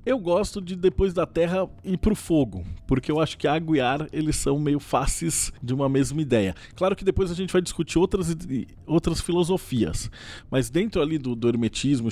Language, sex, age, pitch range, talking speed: Portuguese, male, 20-39, 120-175 Hz, 200 wpm